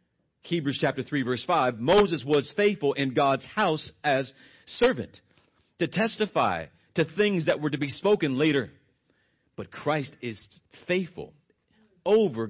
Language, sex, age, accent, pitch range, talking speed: English, male, 40-59, American, 140-195 Hz, 135 wpm